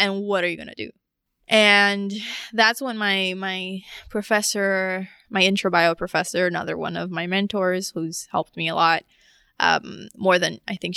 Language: English